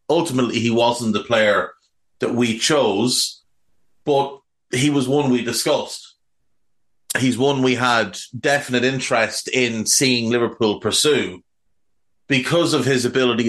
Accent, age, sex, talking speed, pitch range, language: Irish, 30-49, male, 125 wpm, 105-130 Hz, English